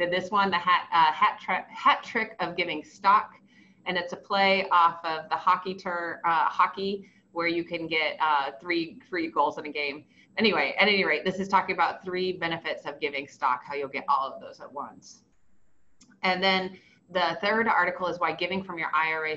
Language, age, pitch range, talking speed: English, 30-49, 160-195 Hz, 205 wpm